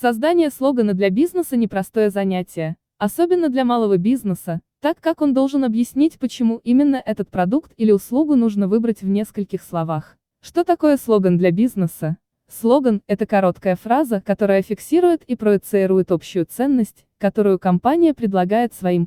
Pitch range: 185-260 Hz